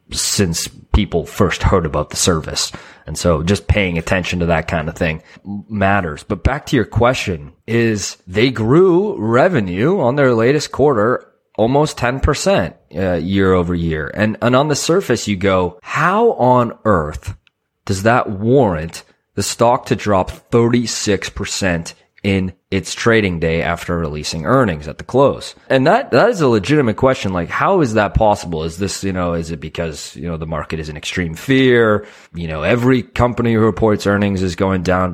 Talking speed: 175 wpm